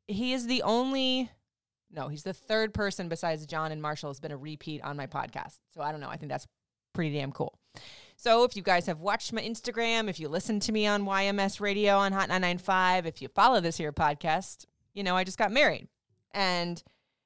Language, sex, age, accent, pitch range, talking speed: English, female, 20-39, American, 155-200 Hz, 215 wpm